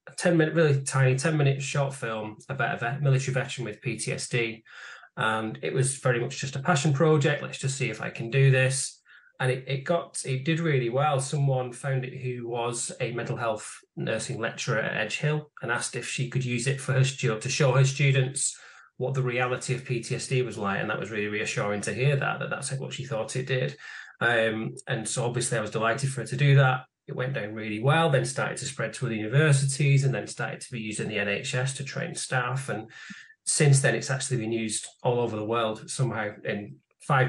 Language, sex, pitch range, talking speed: English, male, 120-140 Hz, 225 wpm